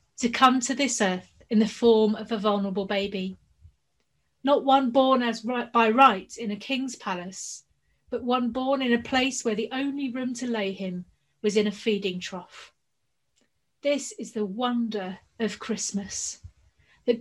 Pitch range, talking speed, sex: 215-250 Hz, 165 wpm, female